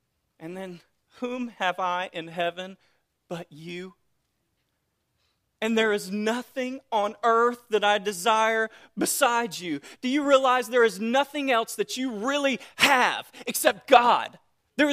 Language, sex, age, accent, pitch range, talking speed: English, male, 30-49, American, 175-245 Hz, 135 wpm